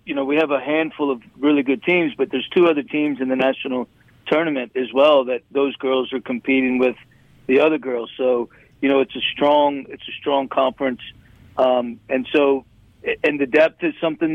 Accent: American